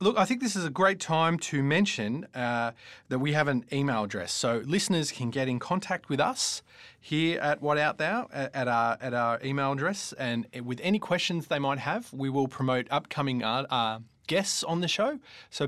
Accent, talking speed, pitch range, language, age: Australian, 210 wpm, 110-160 Hz, English, 30-49